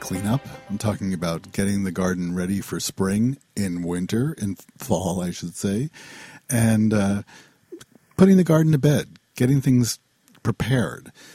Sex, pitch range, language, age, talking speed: male, 85-110 Hz, English, 50-69, 145 wpm